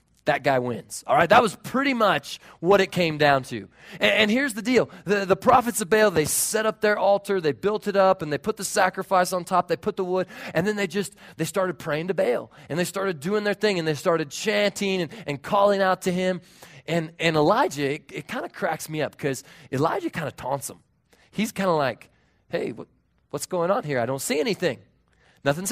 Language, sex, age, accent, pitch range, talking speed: English, male, 30-49, American, 145-195 Hz, 230 wpm